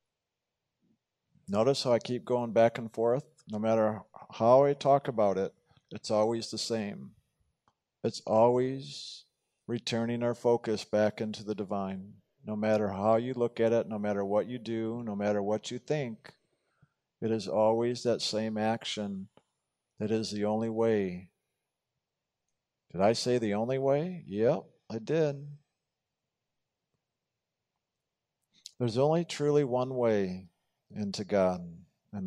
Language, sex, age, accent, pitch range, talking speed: English, male, 50-69, American, 100-125 Hz, 135 wpm